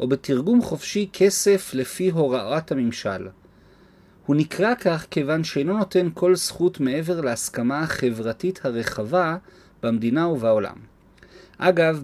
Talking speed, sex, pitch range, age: 110 wpm, male, 120-175 Hz, 40-59